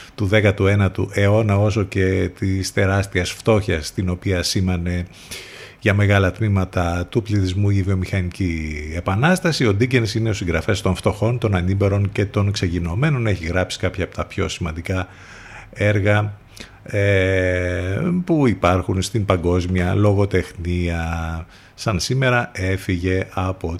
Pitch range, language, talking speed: 90-115 Hz, Greek, 120 wpm